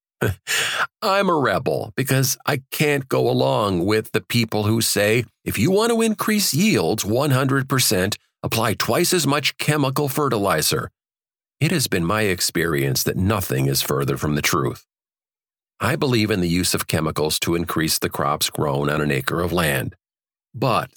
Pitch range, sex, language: 85-130 Hz, male, English